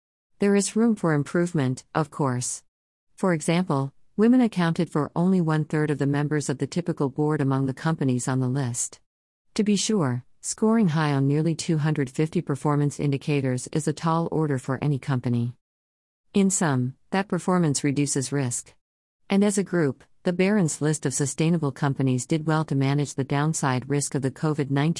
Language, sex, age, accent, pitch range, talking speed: English, female, 50-69, American, 130-160 Hz, 170 wpm